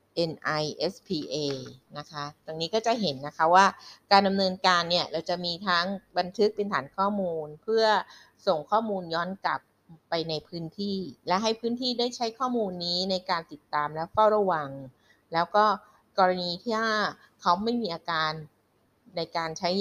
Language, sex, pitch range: Thai, female, 155-205 Hz